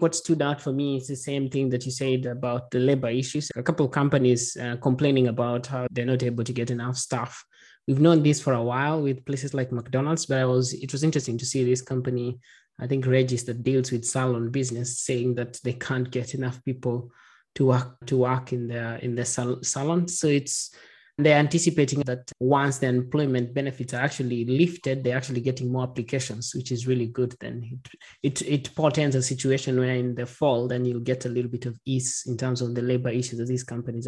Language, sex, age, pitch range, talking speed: English, male, 20-39, 125-140 Hz, 220 wpm